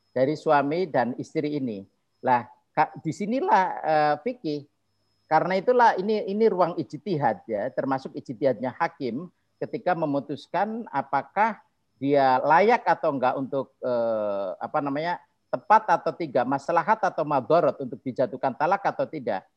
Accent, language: native, Indonesian